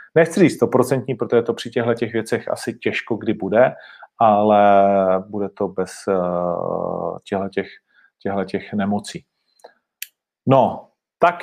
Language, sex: Czech, male